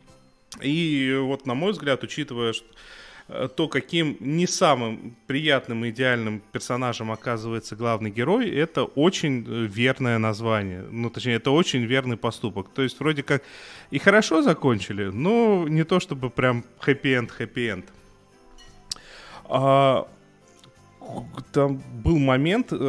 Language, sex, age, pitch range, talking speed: Russian, male, 20-39, 115-145 Hz, 120 wpm